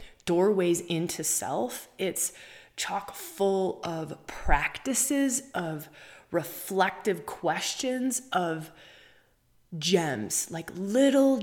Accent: American